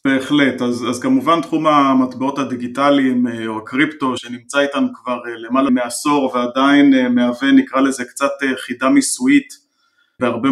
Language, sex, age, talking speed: Hebrew, male, 20-39, 120 wpm